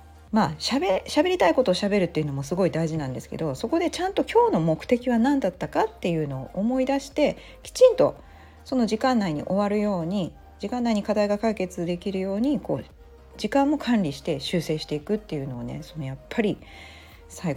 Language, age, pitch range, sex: Japanese, 40-59, 140-215 Hz, female